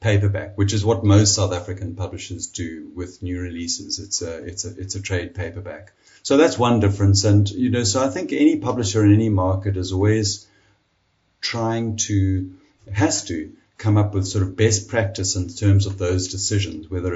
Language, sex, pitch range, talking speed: English, male, 95-110 Hz, 190 wpm